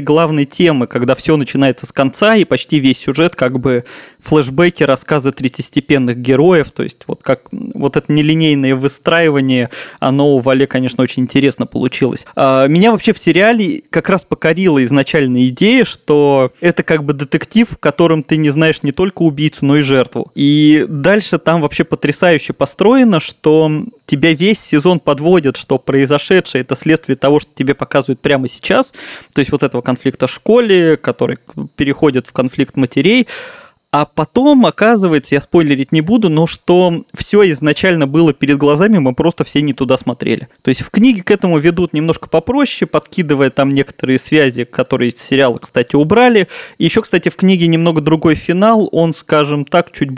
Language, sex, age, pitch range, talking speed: Russian, male, 20-39, 135-175 Hz, 165 wpm